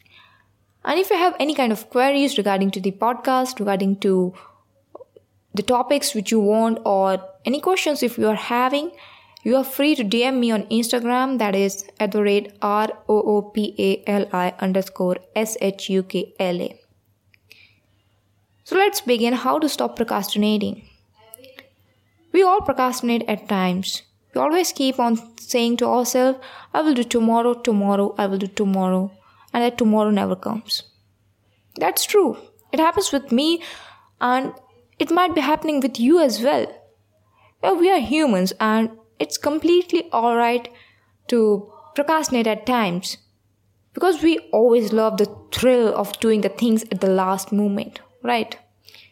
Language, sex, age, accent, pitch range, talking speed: English, female, 20-39, Indian, 195-255 Hz, 145 wpm